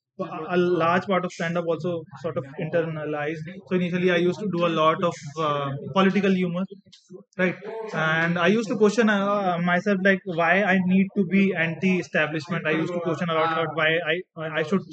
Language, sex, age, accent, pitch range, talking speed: English, male, 20-39, Indian, 160-190 Hz, 185 wpm